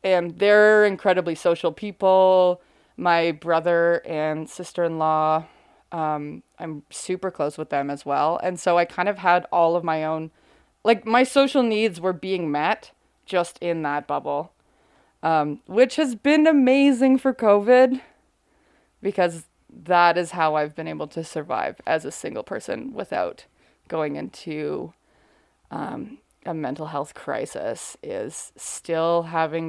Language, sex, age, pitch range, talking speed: English, female, 20-39, 155-190 Hz, 140 wpm